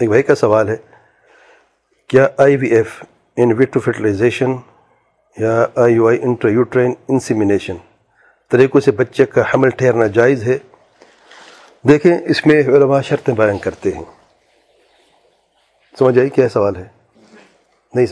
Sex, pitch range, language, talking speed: male, 110-140 Hz, English, 125 wpm